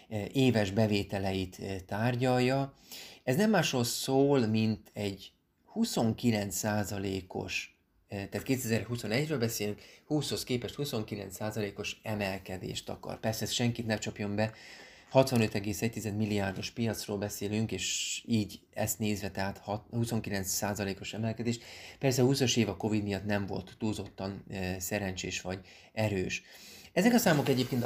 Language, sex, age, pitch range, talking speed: Hungarian, male, 30-49, 100-120 Hz, 115 wpm